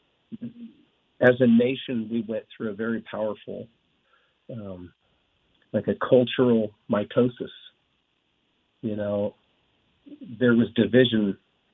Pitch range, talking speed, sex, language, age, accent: 105-145 Hz, 95 wpm, male, English, 50-69, American